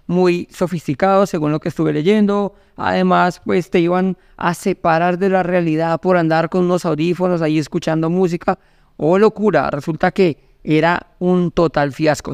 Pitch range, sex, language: 150-185 Hz, male, Spanish